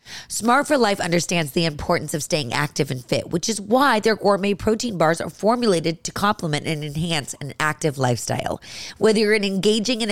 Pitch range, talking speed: 165-240 Hz, 185 wpm